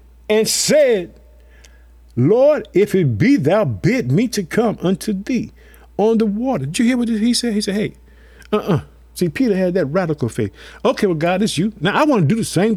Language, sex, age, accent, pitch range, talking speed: English, male, 50-69, American, 130-190 Hz, 205 wpm